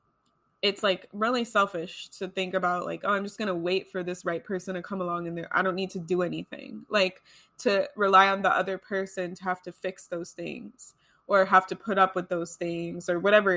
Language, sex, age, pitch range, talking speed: English, female, 20-39, 185-220 Hz, 230 wpm